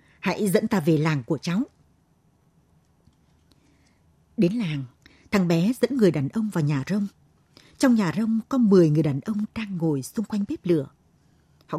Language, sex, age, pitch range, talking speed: Vietnamese, female, 60-79, 155-200 Hz, 170 wpm